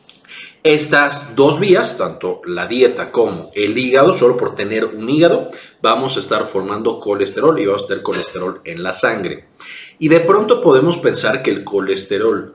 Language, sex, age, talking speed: Spanish, male, 40-59, 165 wpm